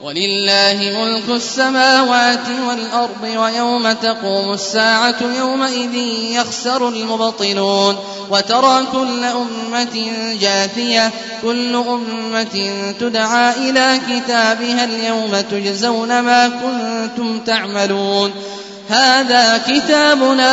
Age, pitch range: 20-39, 215-245 Hz